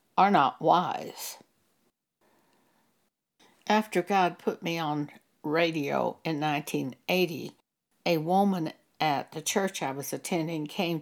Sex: female